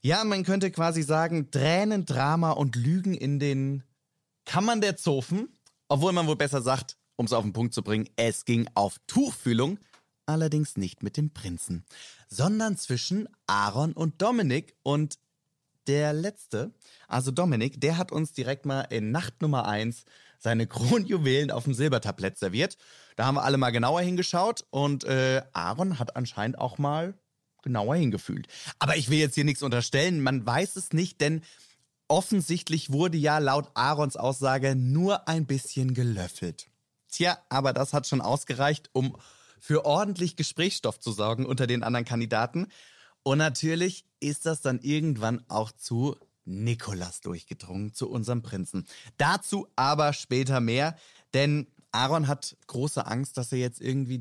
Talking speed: 155 wpm